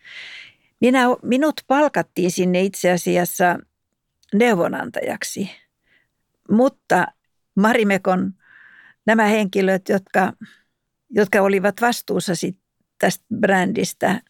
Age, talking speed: 60-79, 65 wpm